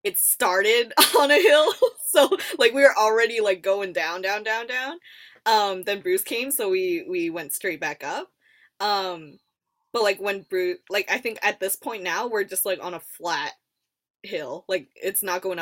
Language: English